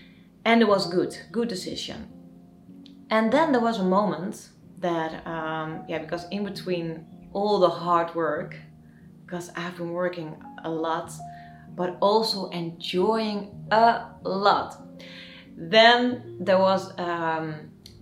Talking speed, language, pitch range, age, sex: 125 wpm, English, 160-200 Hz, 30-49, female